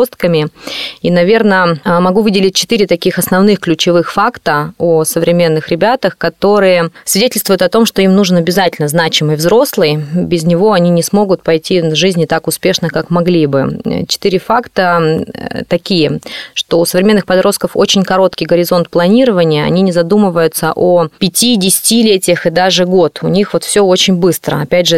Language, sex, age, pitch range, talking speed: Russian, female, 20-39, 160-190 Hz, 155 wpm